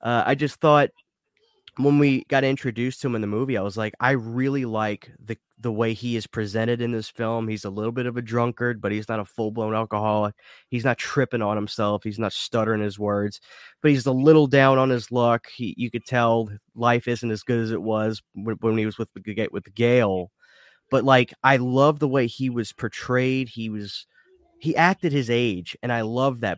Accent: American